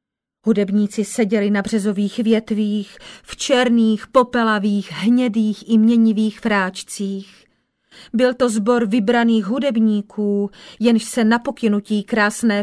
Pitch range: 220-290 Hz